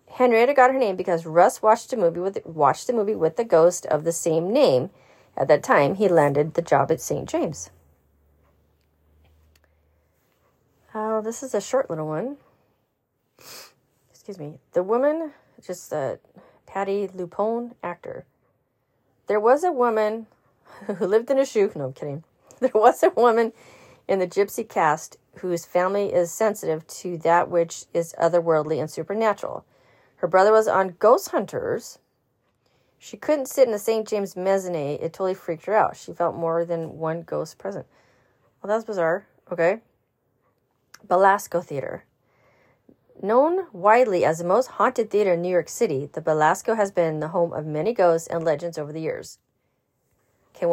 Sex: female